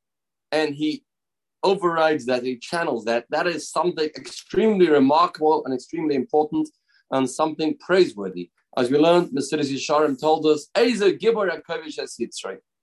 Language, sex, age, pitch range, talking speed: English, male, 40-59, 130-165 Hz, 120 wpm